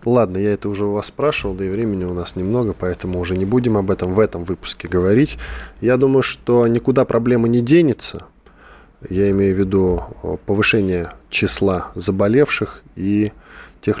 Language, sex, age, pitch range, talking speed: Russian, male, 20-39, 90-115 Hz, 165 wpm